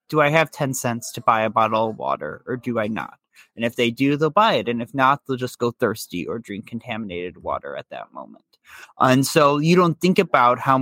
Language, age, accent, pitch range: English, 30-49, American, 120-145 Hz